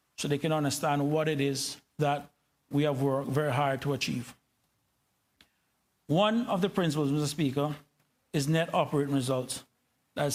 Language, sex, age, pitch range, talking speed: English, male, 60-79, 140-180 Hz, 150 wpm